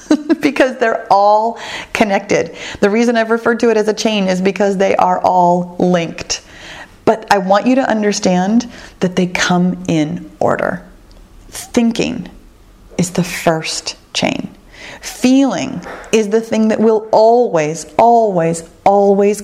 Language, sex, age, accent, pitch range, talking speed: English, female, 30-49, American, 165-235 Hz, 135 wpm